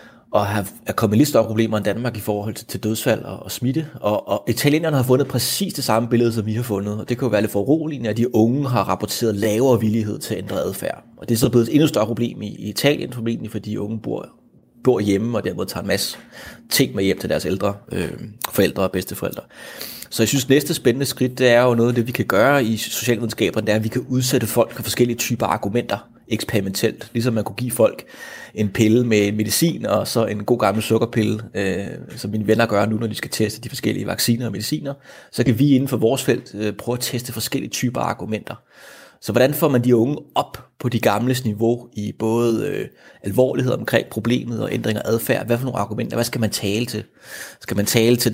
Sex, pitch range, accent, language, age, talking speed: male, 110-125 Hz, native, Danish, 30-49, 230 wpm